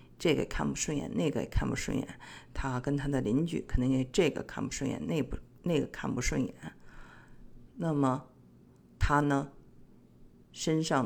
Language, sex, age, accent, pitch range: Chinese, female, 50-69, native, 125-150 Hz